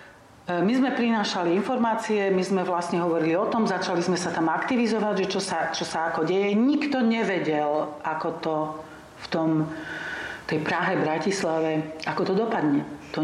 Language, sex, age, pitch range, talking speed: Slovak, female, 40-59, 160-205 Hz, 160 wpm